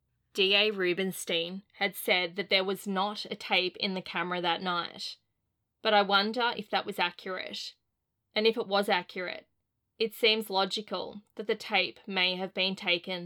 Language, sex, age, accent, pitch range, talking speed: English, female, 20-39, Australian, 180-210 Hz, 165 wpm